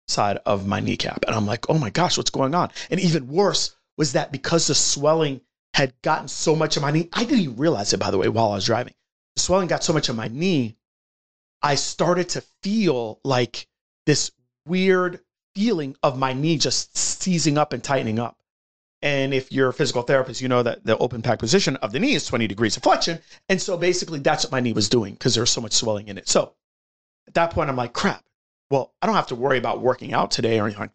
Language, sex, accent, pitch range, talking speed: English, male, American, 125-165 Hz, 240 wpm